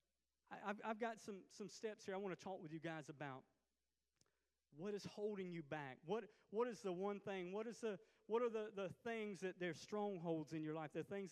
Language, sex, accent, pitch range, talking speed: English, male, American, 180-230 Hz, 225 wpm